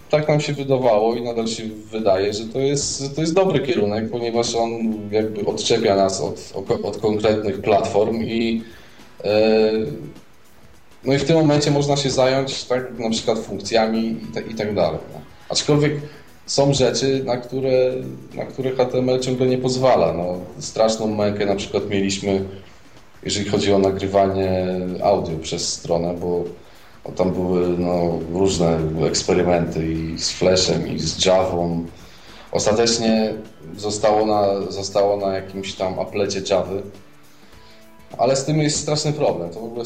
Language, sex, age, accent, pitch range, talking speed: Polish, male, 20-39, native, 95-115 Hz, 145 wpm